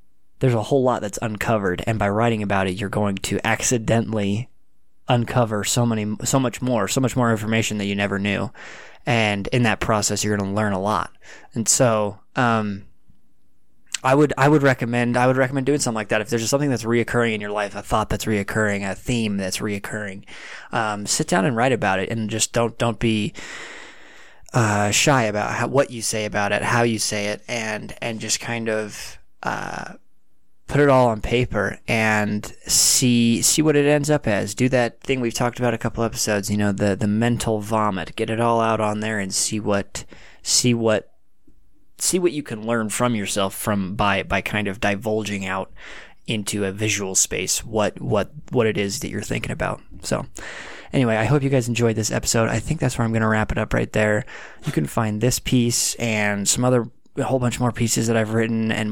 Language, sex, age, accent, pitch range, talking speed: English, male, 20-39, American, 105-120 Hz, 210 wpm